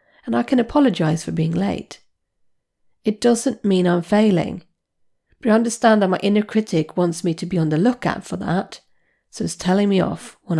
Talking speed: 190 wpm